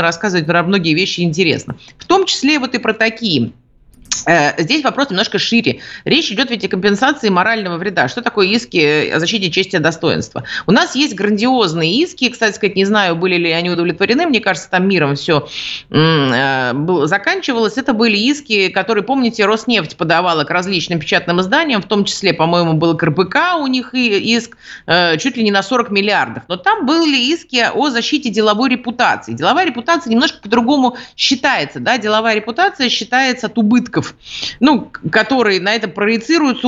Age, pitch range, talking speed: 30-49, 180-250 Hz, 165 wpm